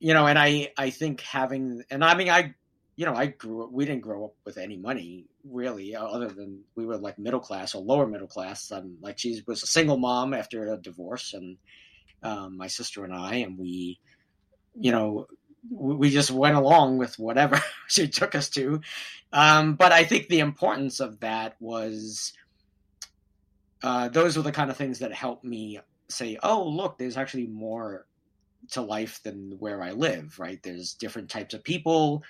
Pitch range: 105-140 Hz